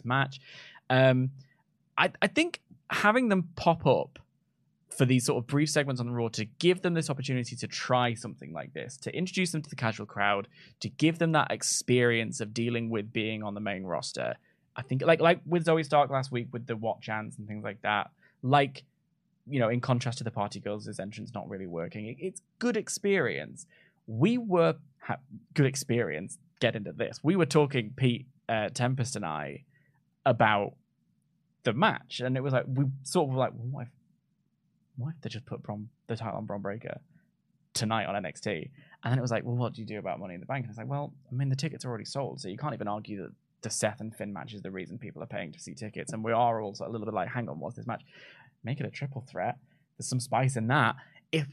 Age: 10-29